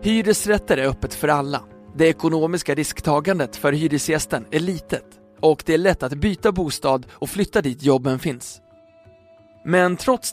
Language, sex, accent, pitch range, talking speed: Swedish, male, native, 135-165 Hz, 150 wpm